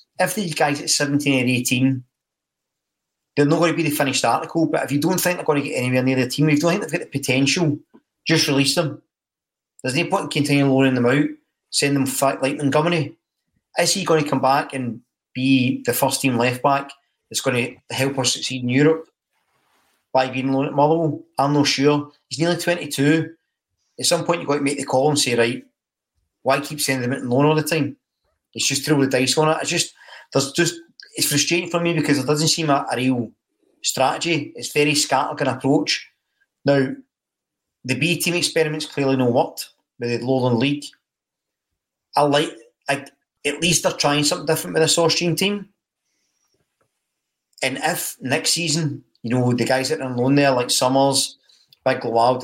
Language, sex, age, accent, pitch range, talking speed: English, male, 30-49, British, 130-160 Hz, 200 wpm